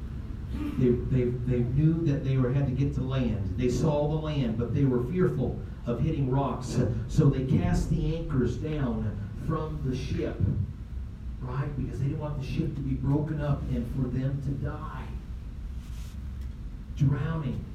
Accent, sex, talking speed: American, male, 165 wpm